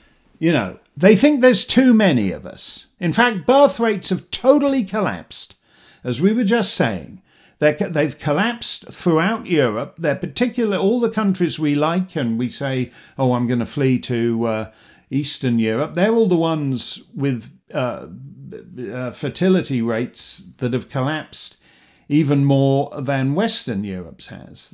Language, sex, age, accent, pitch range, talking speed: English, male, 50-69, British, 125-190 Hz, 150 wpm